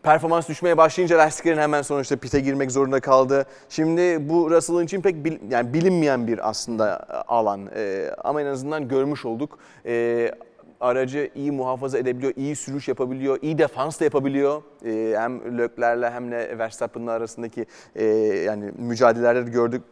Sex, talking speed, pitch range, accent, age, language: male, 150 wpm, 115-145 Hz, native, 30-49, Turkish